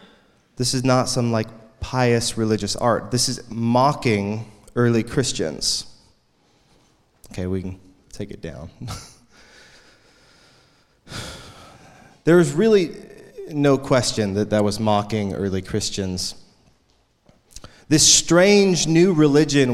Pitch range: 115-145 Hz